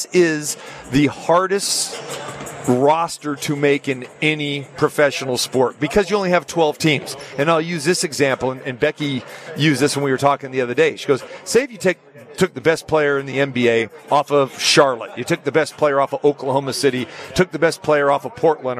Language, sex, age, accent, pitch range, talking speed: English, male, 40-59, American, 140-180 Hz, 210 wpm